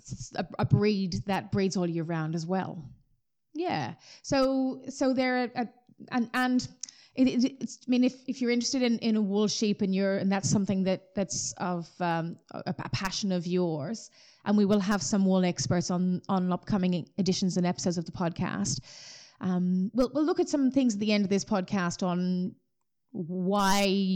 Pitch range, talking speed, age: 180-225 Hz, 190 wpm, 20-39